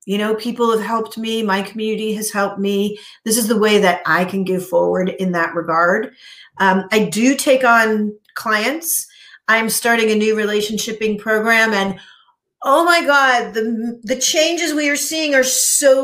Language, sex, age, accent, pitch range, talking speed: English, female, 40-59, American, 200-260 Hz, 175 wpm